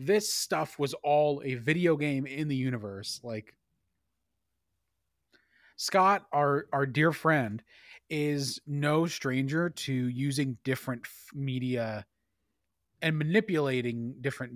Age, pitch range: 30-49, 115-150 Hz